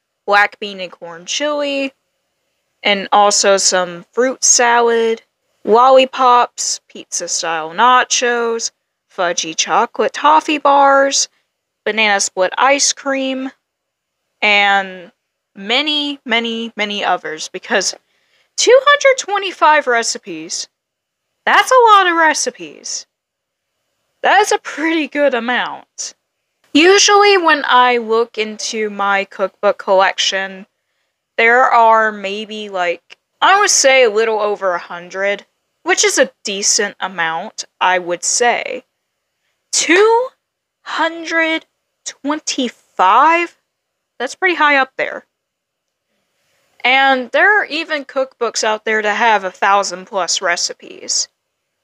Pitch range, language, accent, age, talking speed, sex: 200-290 Hz, English, American, 10-29, 105 wpm, female